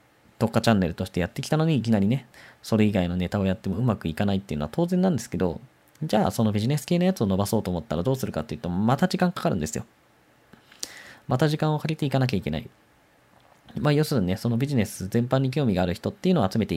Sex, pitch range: male, 95-140 Hz